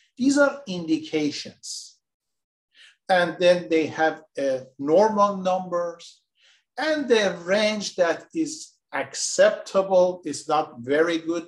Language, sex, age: Persian, male, 50-69